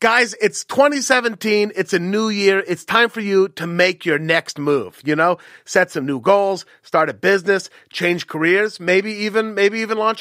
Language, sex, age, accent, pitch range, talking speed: English, male, 30-49, American, 155-200 Hz, 190 wpm